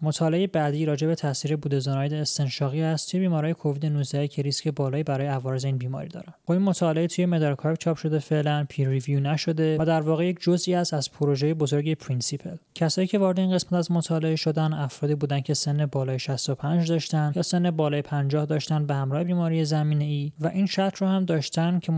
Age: 20-39